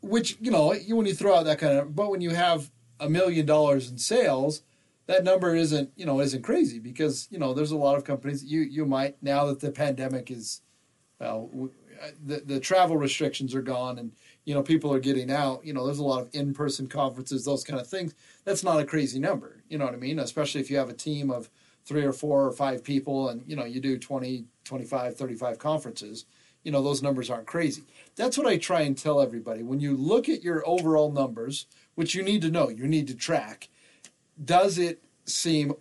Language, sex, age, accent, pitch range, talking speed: English, male, 30-49, American, 130-155 Hz, 230 wpm